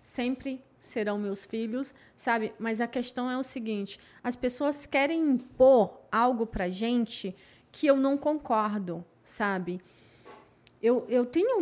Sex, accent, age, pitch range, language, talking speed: female, Brazilian, 30-49, 215-270 Hz, Portuguese, 135 wpm